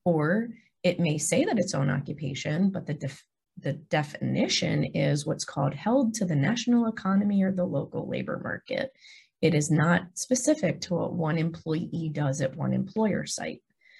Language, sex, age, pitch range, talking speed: English, female, 30-49, 155-225 Hz, 165 wpm